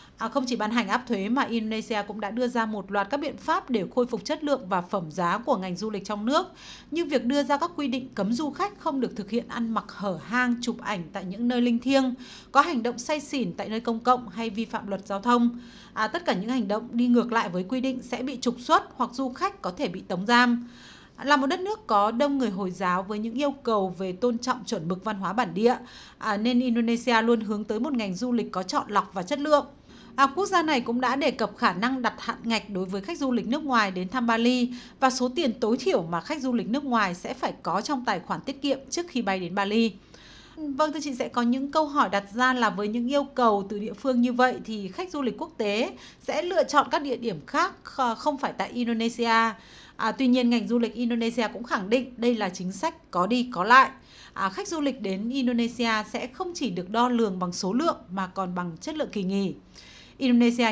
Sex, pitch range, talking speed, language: female, 210-265 Hz, 255 wpm, Vietnamese